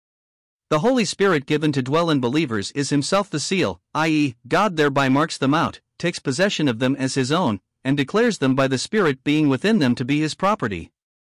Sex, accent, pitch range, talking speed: male, American, 130-165 Hz, 200 wpm